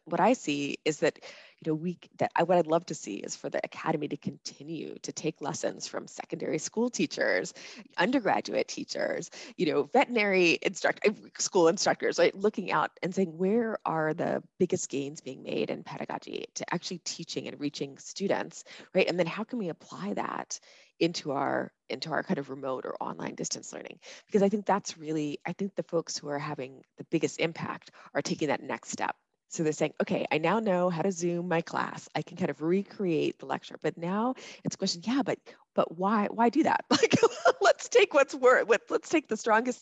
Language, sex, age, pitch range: English, female, 20-39, 155-210 Hz